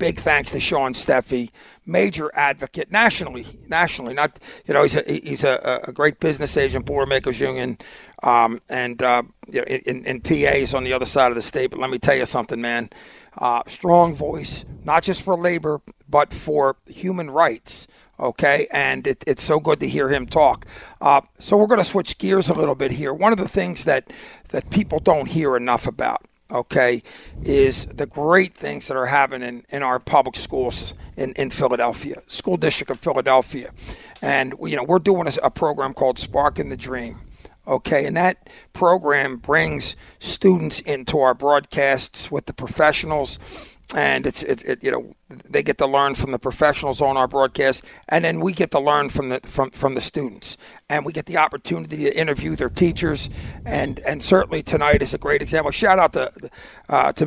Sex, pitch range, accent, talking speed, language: male, 130-160 Hz, American, 185 wpm, English